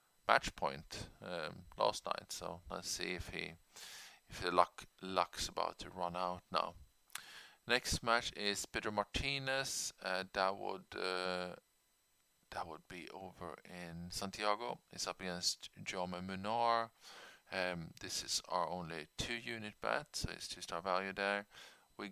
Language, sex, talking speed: English, male, 140 wpm